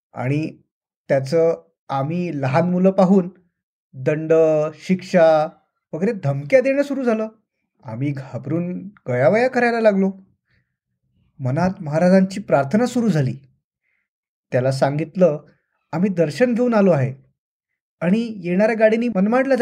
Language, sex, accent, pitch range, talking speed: Marathi, male, native, 155-210 Hz, 105 wpm